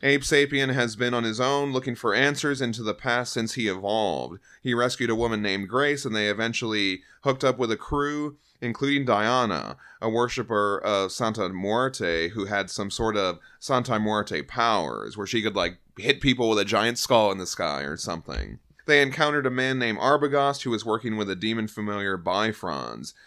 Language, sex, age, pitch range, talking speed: English, male, 30-49, 100-125 Hz, 190 wpm